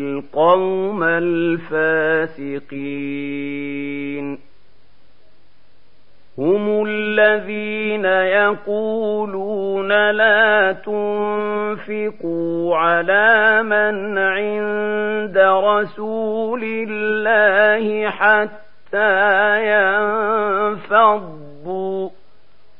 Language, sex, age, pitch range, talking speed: Arabic, male, 40-59, 160-210 Hz, 35 wpm